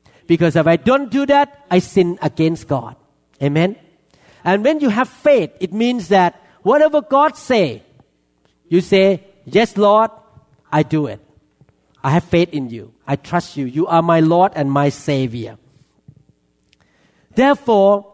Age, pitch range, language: 50-69, 150-215 Hz, Thai